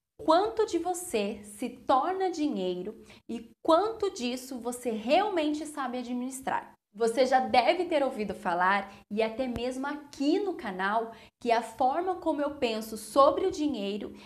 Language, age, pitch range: Portuguese, 10-29, 220-285 Hz